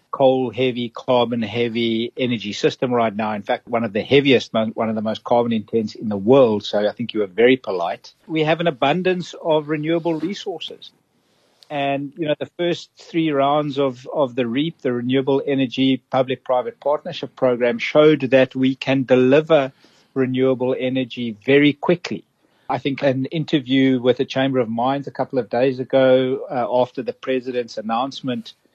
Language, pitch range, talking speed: English, 120-145 Hz, 165 wpm